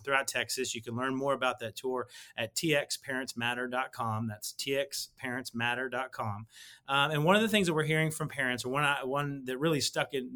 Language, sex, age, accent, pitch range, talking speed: English, male, 30-49, American, 125-155 Hz, 185 wpm